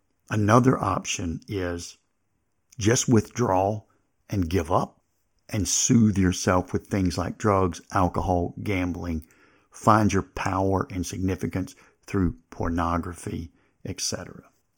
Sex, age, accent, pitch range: male, 50-69, American, 90-110 Hz